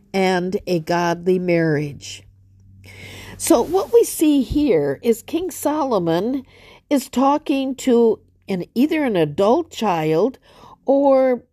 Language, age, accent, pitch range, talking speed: English, 50-69, American, 180-230 Hz, 110 wpm